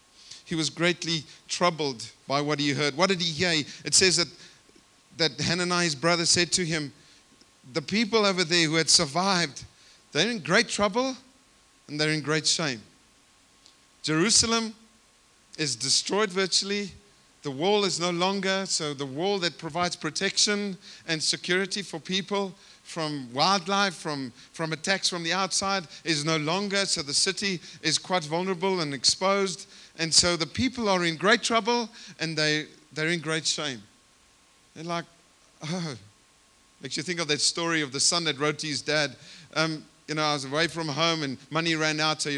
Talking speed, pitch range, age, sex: 170 wpm, 155-190 Hz, 50-69, male